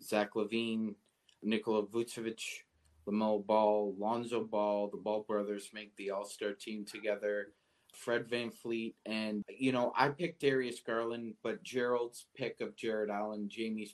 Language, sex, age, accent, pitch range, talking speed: English, male, 30-49, American, 105-115 Hz, 140 wpm